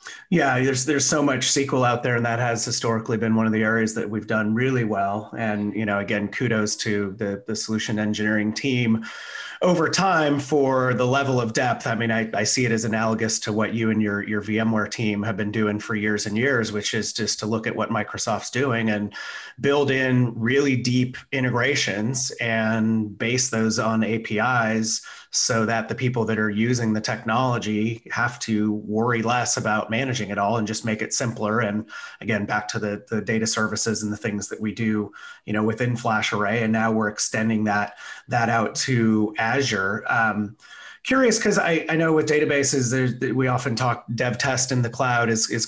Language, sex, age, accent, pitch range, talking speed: English, male, 30-49, American, 110-125 Hz, 195 wpm